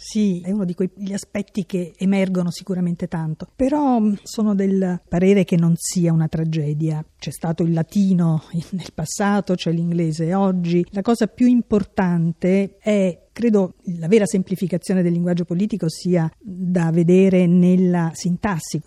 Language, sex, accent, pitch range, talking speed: Italian, female, native, 170-210 Hz, 145 wpm